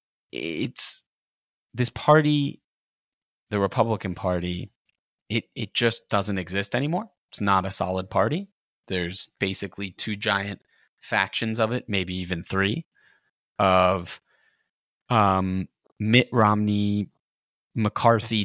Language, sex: English, male